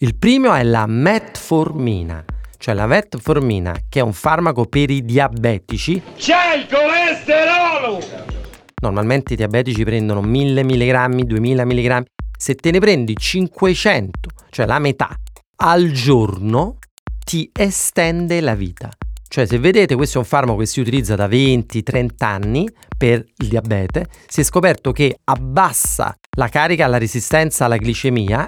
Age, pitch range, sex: 40-59, 120-170 Hz, male